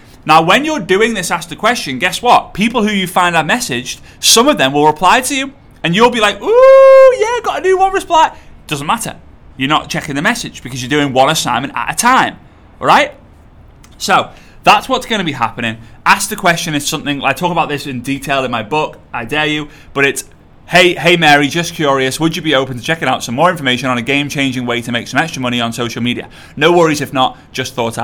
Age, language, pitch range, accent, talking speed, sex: 30-49, English, 130-185 Hz, British, 235 wpm, male